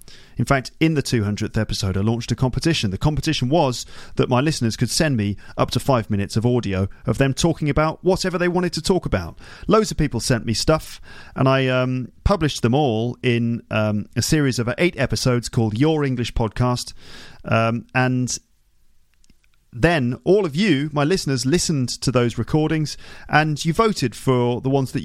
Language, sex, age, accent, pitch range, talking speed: English, male, 40-59, British, 110-140 Hz, 185 wpm